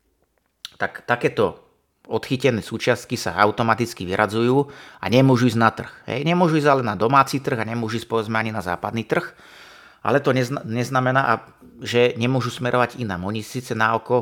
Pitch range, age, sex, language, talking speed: 105-125 Hz, 30-49, male, Slovak, 155 wpm